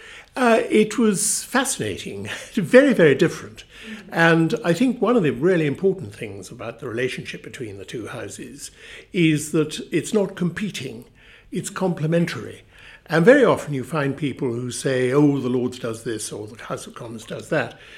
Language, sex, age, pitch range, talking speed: English, male, 60-79, 135-180 Hz, 165 wpm